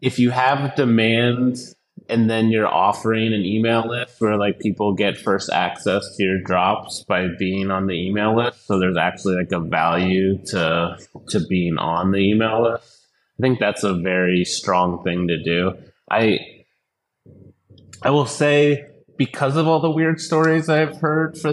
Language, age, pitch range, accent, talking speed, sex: English, 30-49, 95-130 Hz, American, 170 wpm, male